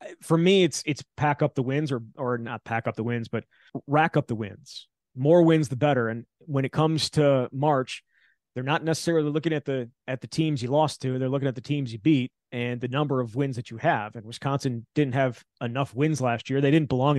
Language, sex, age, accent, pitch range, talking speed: English, male, 30-49, American, 125-150 Hz, 235 wpm